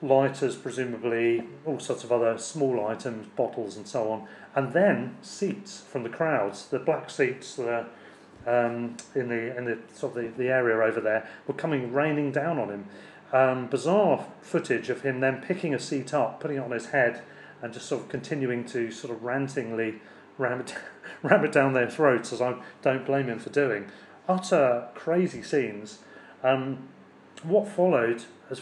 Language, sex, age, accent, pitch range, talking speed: English, male, 30-49, British, 115-145 Hz, 180 wpm